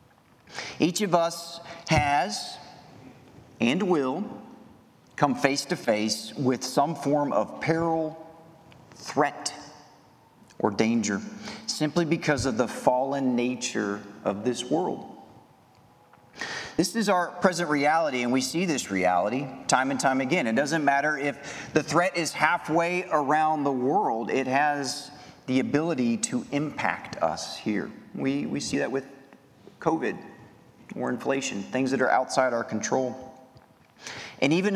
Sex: male